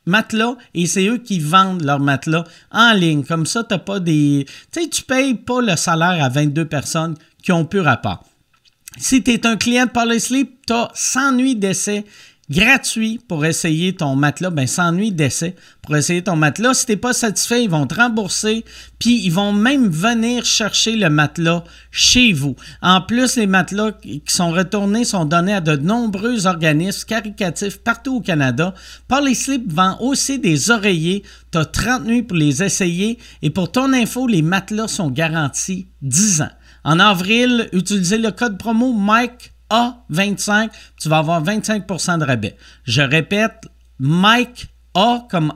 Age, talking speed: 50-69, 175 wpm